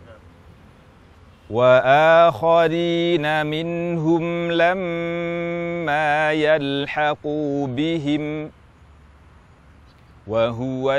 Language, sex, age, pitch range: Indonesian, male, 40-59, 125-155 Hz